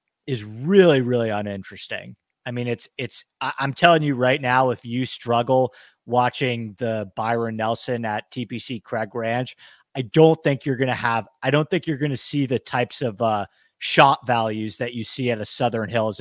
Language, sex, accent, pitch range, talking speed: English, male, American, 115-165 Hz, 180 wpm